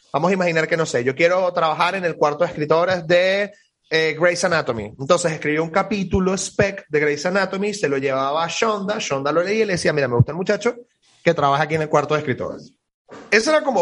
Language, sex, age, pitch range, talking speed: Spanish, male, 30-49, 140-195 Hz, 230 wpm